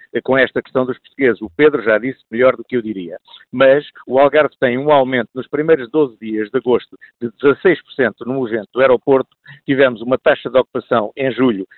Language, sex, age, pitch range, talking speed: Portuguese, male, 50-69, 125-150 Hz, 200 wpm